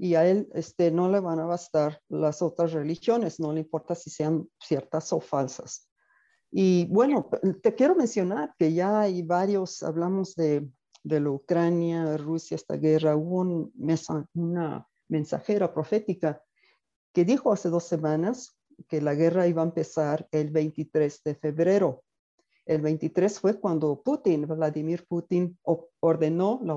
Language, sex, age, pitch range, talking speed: Spanish, female, 50-69, 155-180 Hz, 150 wpm